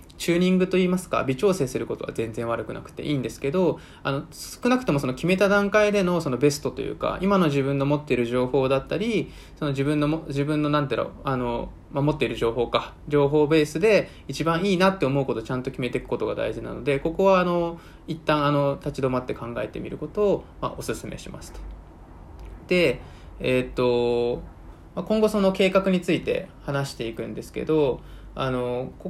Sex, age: male, 20-39